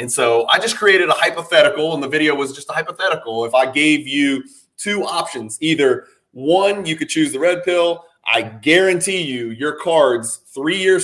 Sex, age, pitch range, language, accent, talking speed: male, 30-49, 130-175 Hz, English, American, 190 wpm